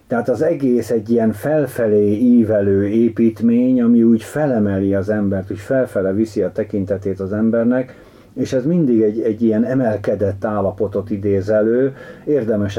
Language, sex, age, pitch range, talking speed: Hungarian, male, 50-69, 100-120 Hz, 140 wpm